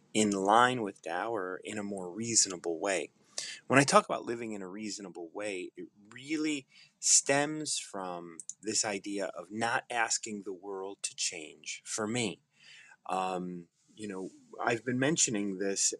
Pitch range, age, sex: 95-135 Hz, 30-49, male